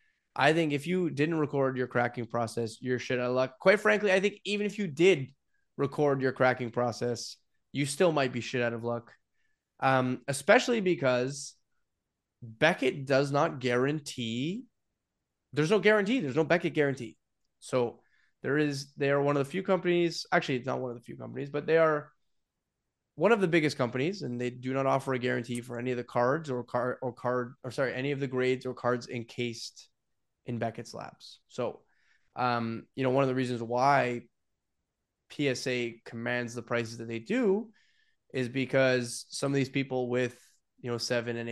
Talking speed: 185 wpm